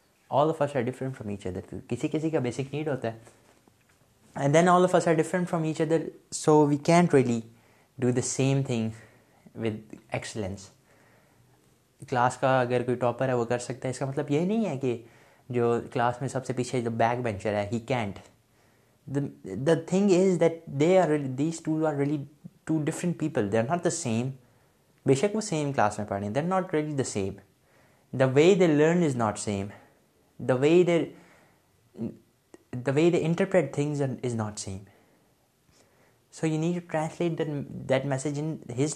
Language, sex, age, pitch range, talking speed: Urdu, male, 20-39, 120-155 Hz, 175 wpm